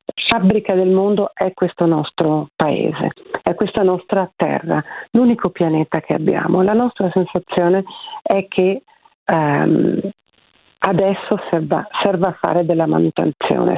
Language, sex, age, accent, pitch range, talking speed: Italian, female, 40-59, native, 160-195 Hz, 120 wpm